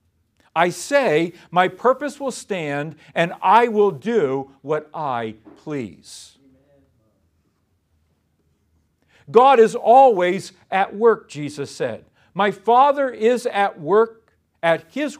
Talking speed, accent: 105 wpm, American